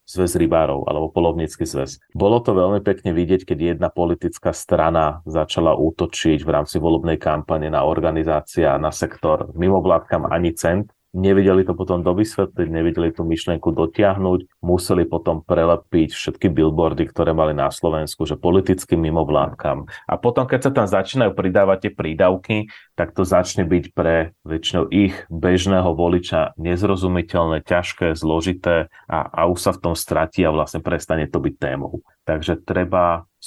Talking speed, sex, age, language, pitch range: 150 wpm, male, 30-49, Slovak, 80-95 Hz